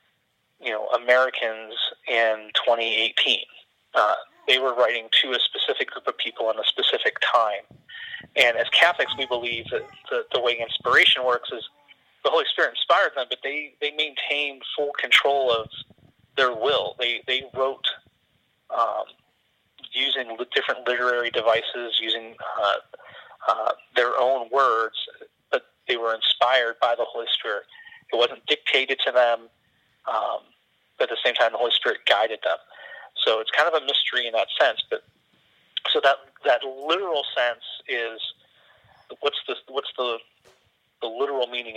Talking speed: 150 wpm